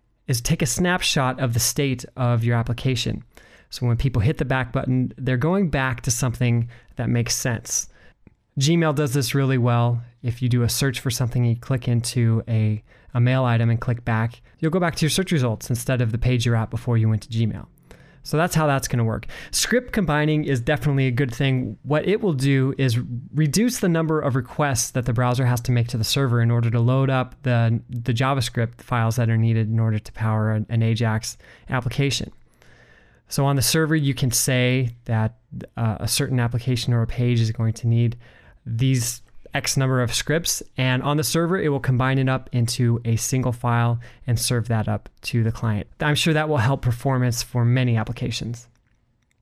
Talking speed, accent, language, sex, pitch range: 210 wpm, American, English, male, 115-140 Hz